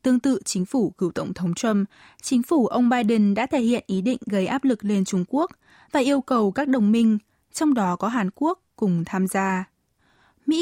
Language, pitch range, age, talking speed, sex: Vietnamese, 190-260 Hz, 20-39, 215 wpm, female